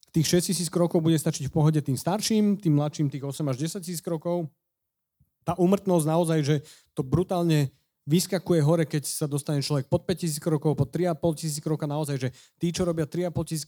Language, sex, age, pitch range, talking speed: Slovak, male, 30-49, 145-175 Hz, 185 wpm